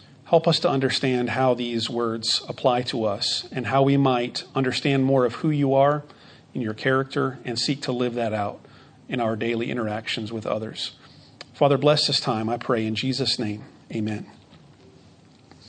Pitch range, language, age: 125-155 Hz, English, 40-59